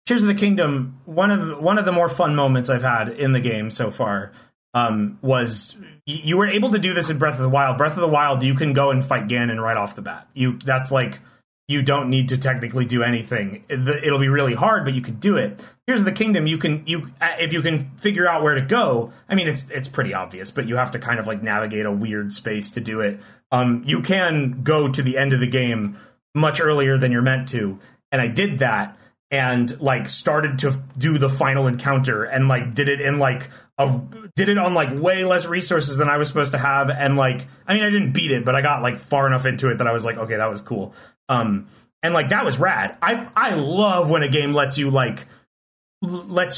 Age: 30-49